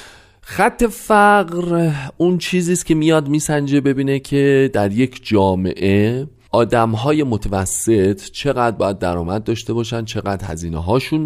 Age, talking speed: 30-49, 125 wpm